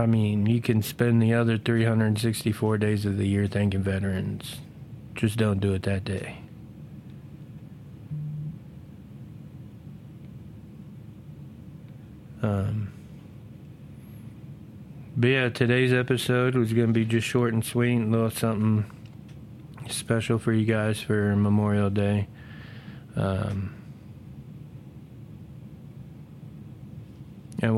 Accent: American